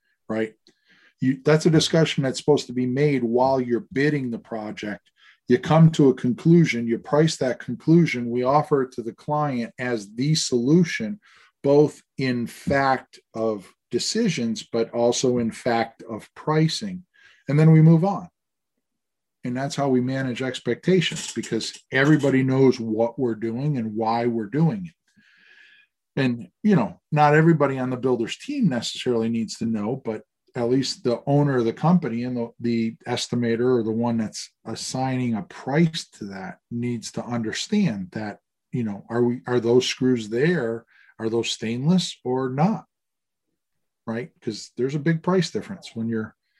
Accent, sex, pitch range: American, male, 115-155 Hz